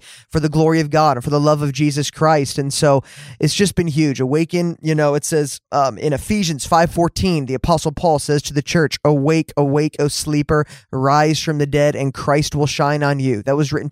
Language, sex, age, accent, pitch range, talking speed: English, male, 20-39, American, 145-165 Hz, 220 wpm